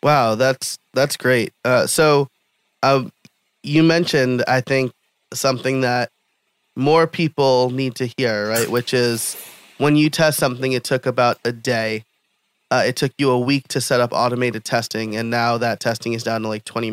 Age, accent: 30-49, American